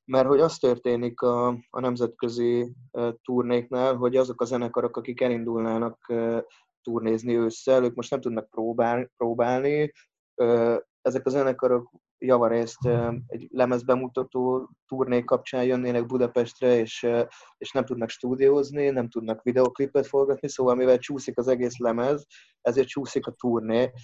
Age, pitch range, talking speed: 20-39, 120-130 Hz, 140 wpm